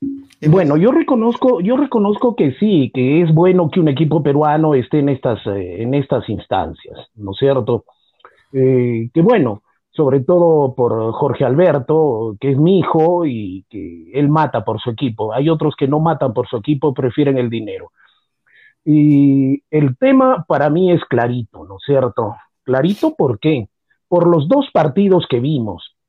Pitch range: 130-190 Hz